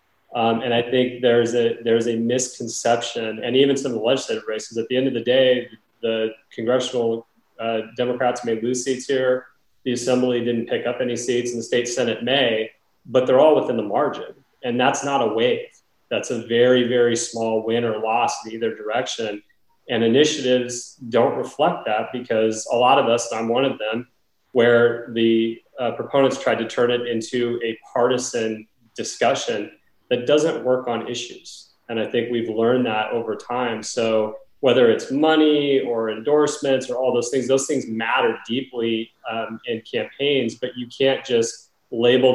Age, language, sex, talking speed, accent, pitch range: 30-49, English, male, 180 wpm, American, 115-125 Hz